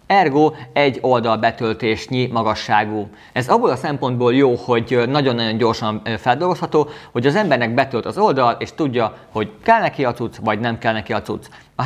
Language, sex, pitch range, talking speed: Hungarian, male, 115-135 Hz, 165 wpm